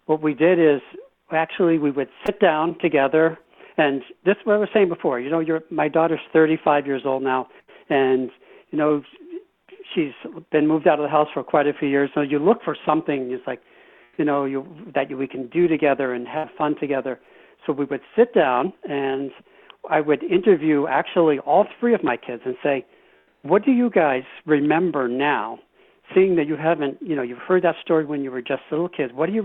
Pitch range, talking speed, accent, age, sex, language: 140-170 Hz, 210 wpm, American, 60-79, male, English